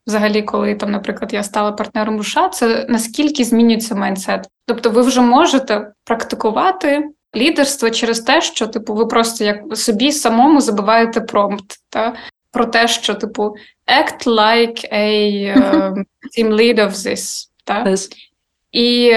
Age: 20-39